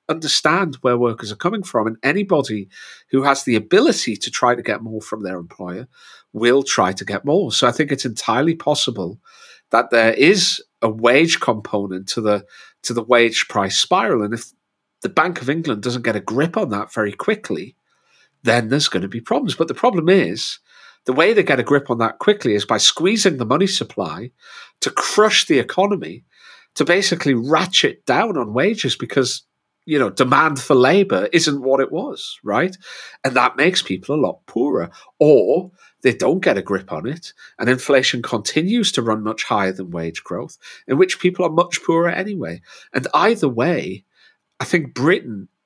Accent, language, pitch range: British, English, 120-175 Hz